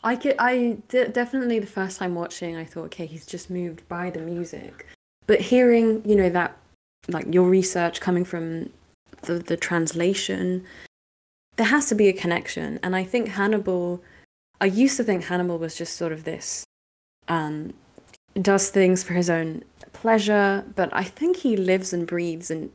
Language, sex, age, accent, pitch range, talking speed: English, female, 20-39, British, 170-215 Hz, 170 wpm